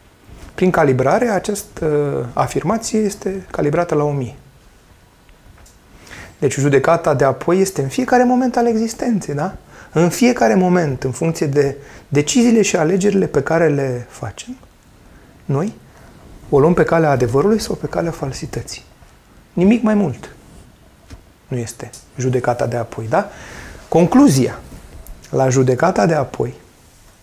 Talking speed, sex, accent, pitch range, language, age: 125 wpm, male, native, 130-175 Hz, Romanian, 30-49